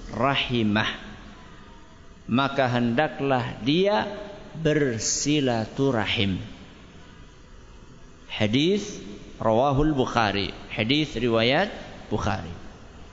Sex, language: male, Malay